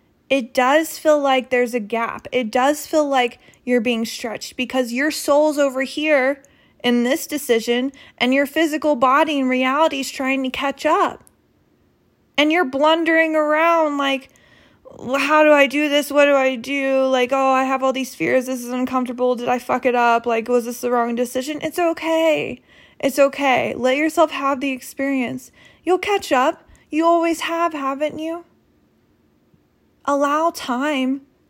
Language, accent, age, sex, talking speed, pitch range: English, American, 20-39, female, 165 wpm, 250-305 Hz